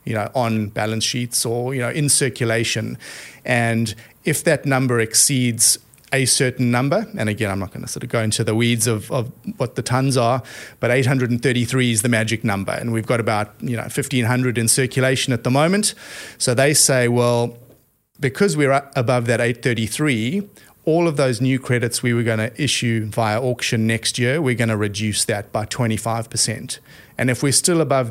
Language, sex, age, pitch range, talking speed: English, male, 30-49, 115-130 Hz, 190 wpm